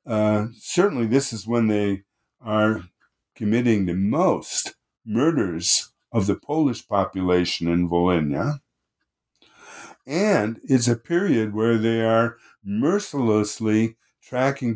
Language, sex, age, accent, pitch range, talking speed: English, male, 50-69, American, 95-120 Hz, 105 wpm